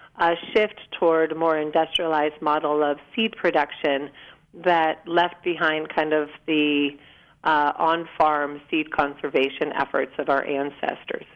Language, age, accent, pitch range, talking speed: English, 40-59, American, 150-175 Hz, 125 wpm